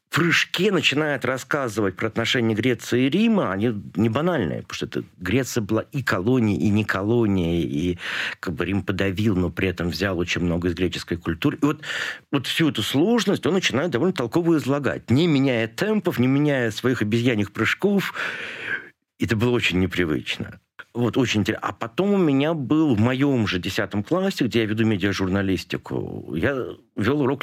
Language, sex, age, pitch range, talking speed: Russian, male, 50-69, 100-145 Hz, 170 wpm